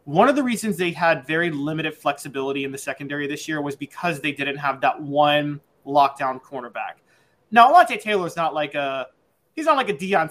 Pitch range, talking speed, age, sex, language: 145-200 Hz, 205 wpm, 20-39, male, English